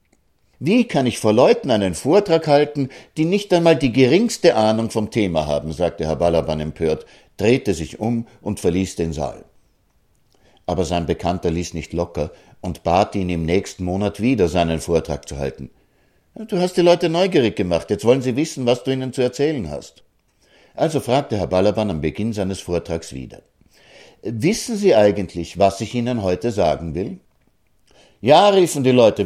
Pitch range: 85-140 Hz